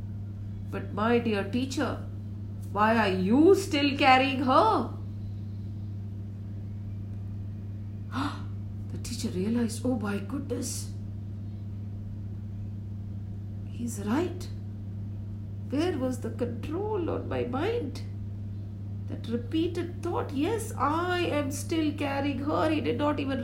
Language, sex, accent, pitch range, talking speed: English, female, Indian, 100-115 Hz, 95 wpm